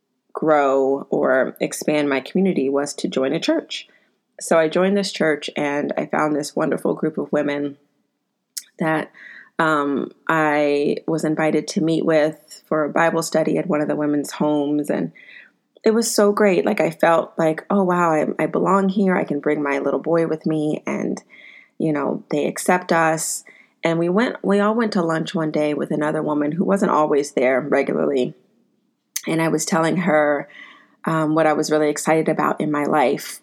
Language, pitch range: English, 145-170 Hz